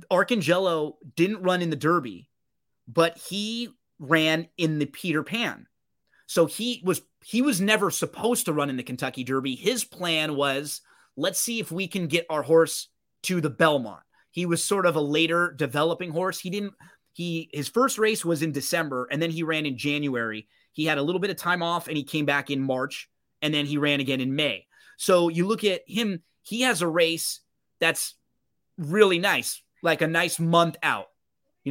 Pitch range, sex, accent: 145-175 Hz, male, American